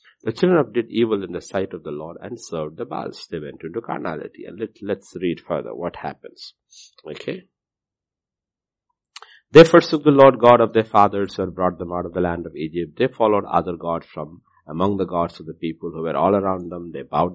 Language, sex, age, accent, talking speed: English, male, 60-79, Indian, 215 wpm